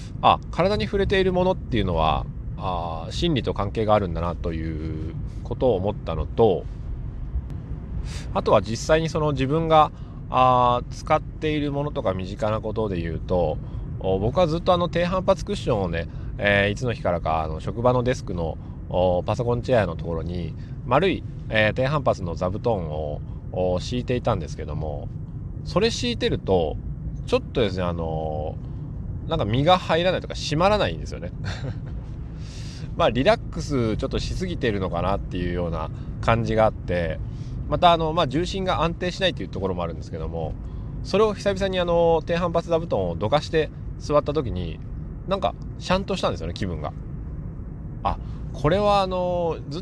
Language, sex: Japanese, male